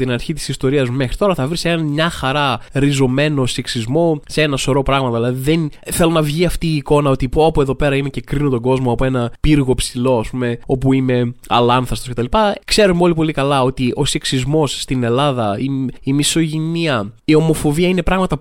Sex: male